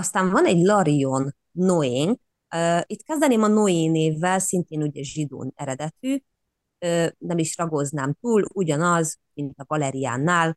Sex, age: female, 30-49